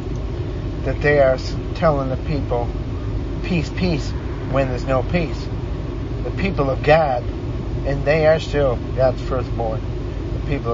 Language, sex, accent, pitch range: English, male, American, 115-135 Hz